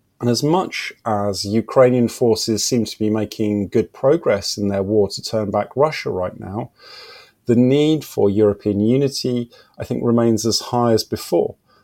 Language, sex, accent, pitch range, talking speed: French, male, British, 105-125 Hz, 165 wpm